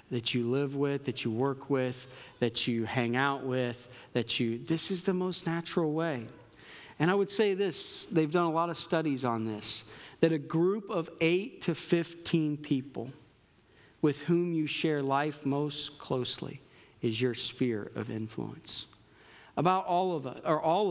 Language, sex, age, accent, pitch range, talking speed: English, male, 40-59, American, 120-155 Hz, 170 wpm